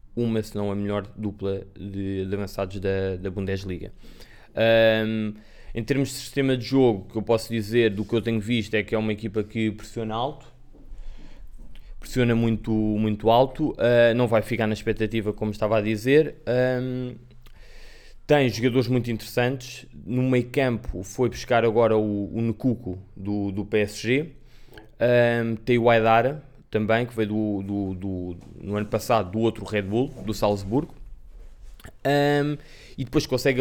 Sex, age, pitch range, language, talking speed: male, 20-39, 105-125 Hz, Portuguese, 155 wpm